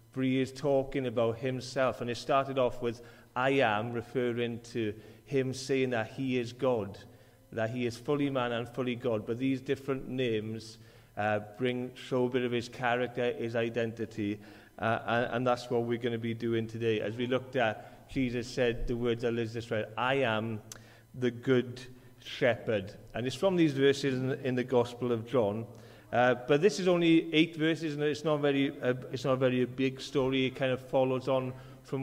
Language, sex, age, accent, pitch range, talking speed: English, male, 40-59, British, 115-135 Hz, 195 wpm